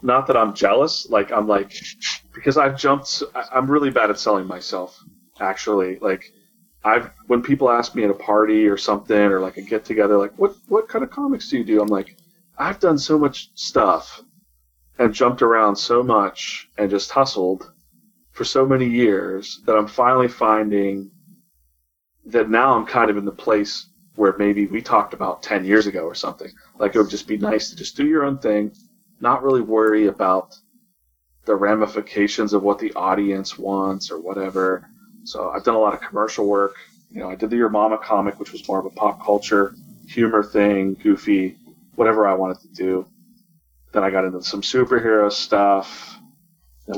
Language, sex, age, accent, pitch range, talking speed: English, male, 30-49, American, 95-135 Hz, 190 wpm